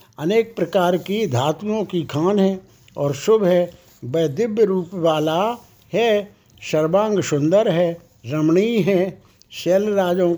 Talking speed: 120 wpm